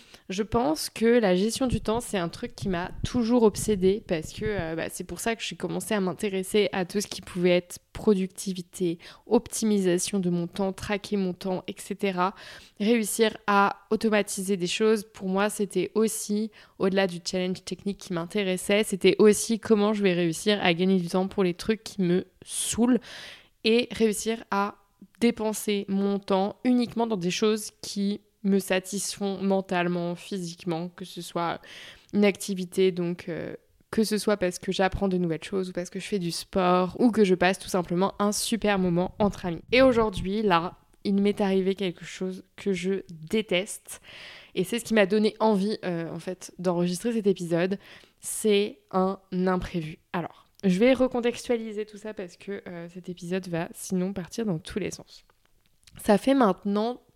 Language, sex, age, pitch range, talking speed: French, female, 20-39, 180-215 Hz, 175 wpm